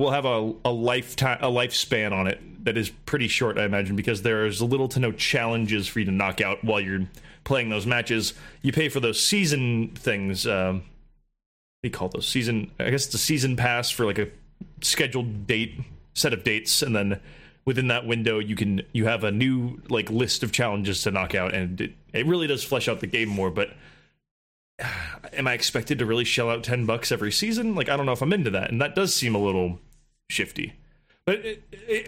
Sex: male